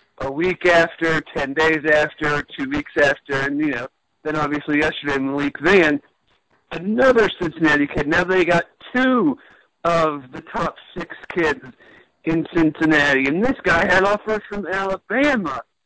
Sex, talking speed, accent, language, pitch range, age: male, 150 wpm, American, English, 160-205 Hz, 50-69